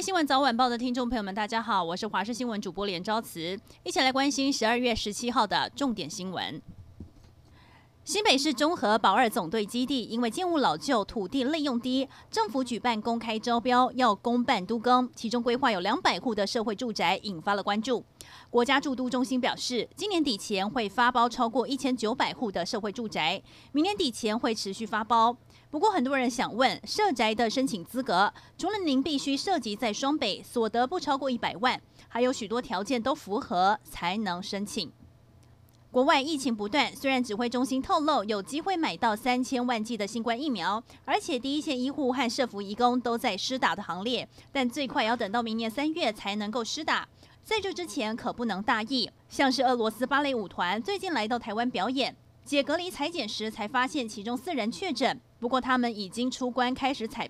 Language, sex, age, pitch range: Chinese, female, 30-49, 220-270 Hz